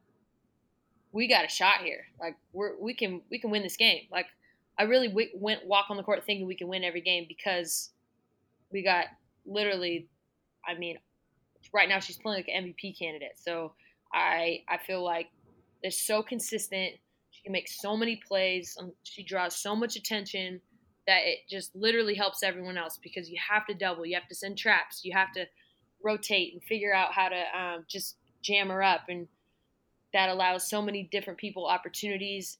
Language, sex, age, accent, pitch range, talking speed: English, female, 20-39, American, 175-200 Hz, 185 wpm